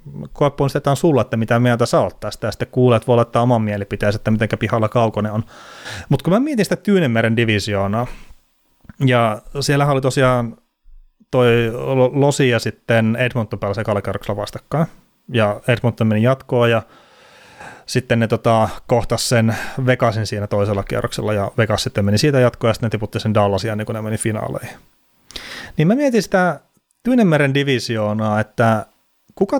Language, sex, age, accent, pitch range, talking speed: Finnish, male, 30-49, native, 110-140 Hz, 160 wpm